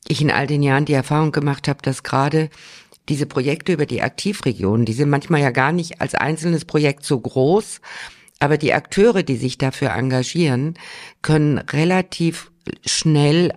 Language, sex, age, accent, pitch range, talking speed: German, female, 50-69, German, 130-185 Hz, 165 wpm